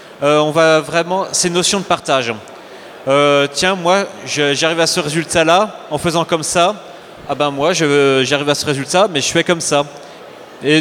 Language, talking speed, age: French, 190 wpm, 30-49